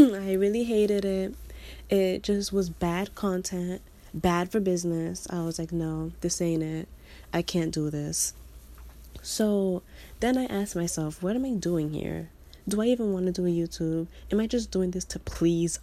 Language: English